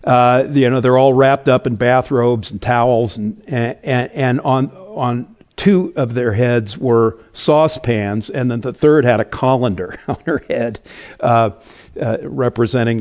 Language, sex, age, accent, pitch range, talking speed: English, male, 50-69, American, 115-145 Hz, 160 wpm